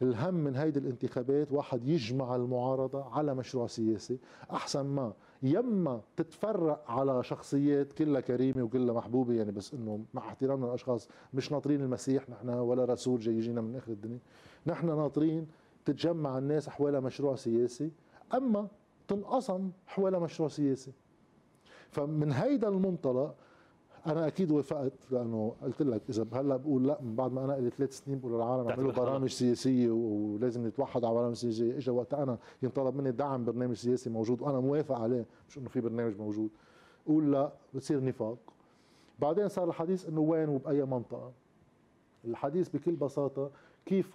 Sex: male